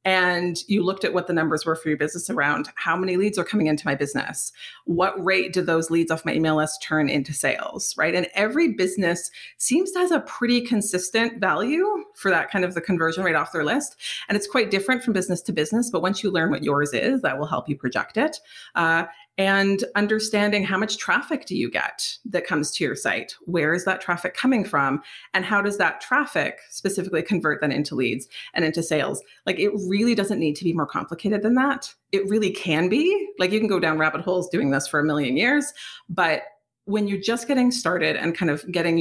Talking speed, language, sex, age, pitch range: 220 wpm, English, female, 30-49, 155-205 Hz